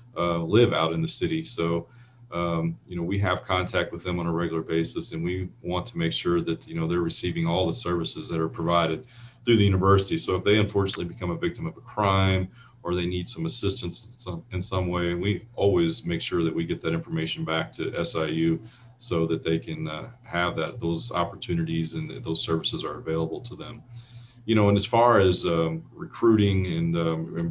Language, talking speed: English, 210 wpm